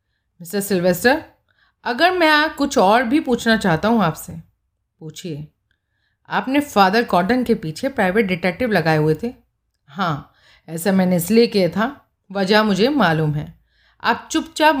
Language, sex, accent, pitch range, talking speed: Hindi, female, native, 170-240 Hz, 140 wpm